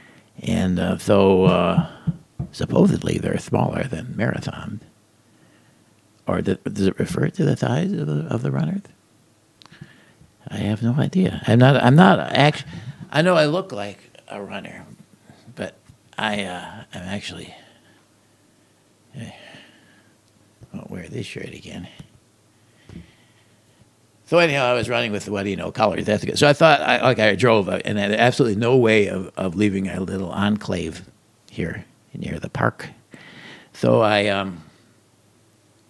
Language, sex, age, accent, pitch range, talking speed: English, male, 50-69, American, 105-130 Hz, 145 wpm